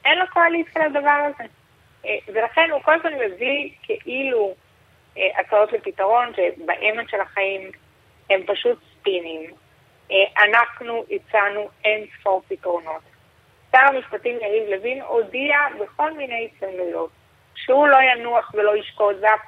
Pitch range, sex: 210-280 Hz, female